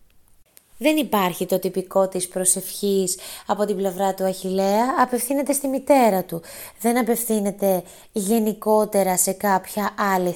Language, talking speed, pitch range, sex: Greek, 120 wpm, 195-255 Hz, female